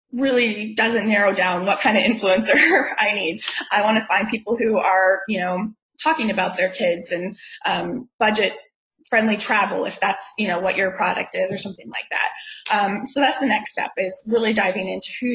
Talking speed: 200 wpm